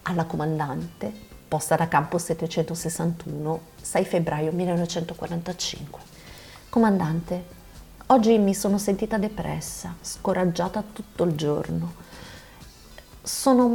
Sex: female